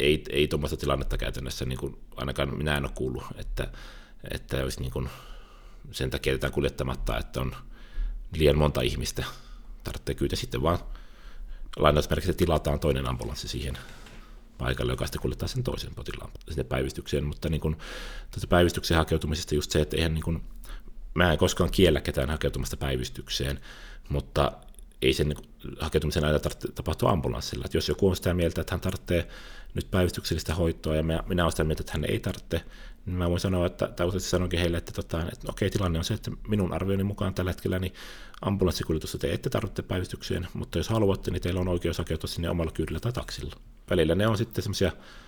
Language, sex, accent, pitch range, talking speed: Finnish, male, native, 70-90 Hz, 180 wpm